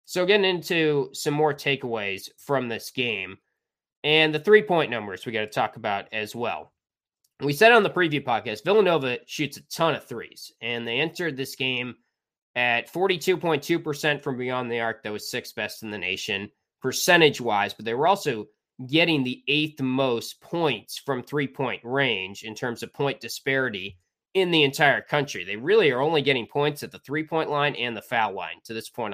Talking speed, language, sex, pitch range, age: 185 wpm, English, male, 120-150 Hz, 20-39